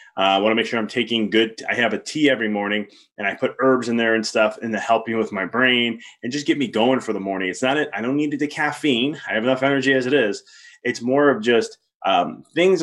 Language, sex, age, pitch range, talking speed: English, male, 20-39, 110-145 Hz, 265 wpm